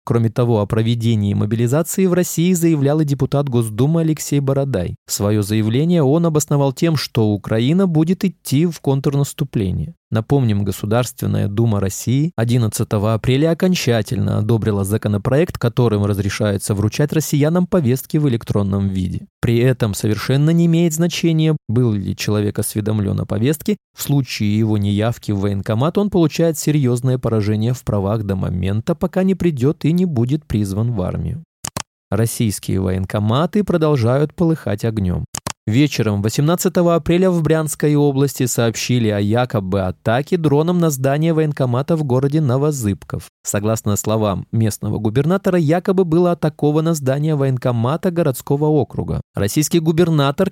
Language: Russian